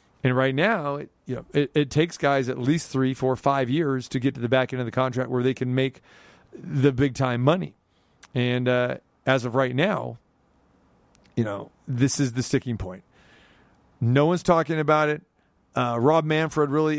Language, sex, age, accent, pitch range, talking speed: English, male, 40-59, American, 120-145 Hz, 190 wpm